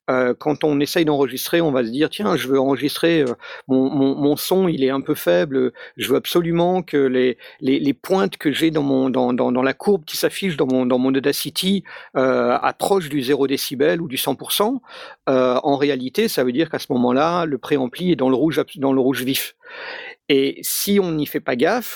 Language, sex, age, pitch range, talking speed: French, male, 50-69, 140-185 Hz, 215 wpm